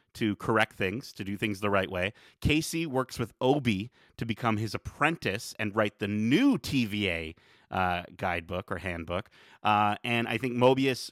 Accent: American